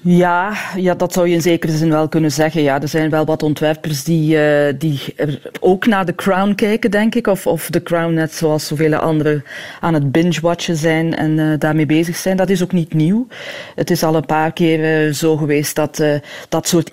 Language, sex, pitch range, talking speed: Dutch, female, 155-180 Hz, 215 wpm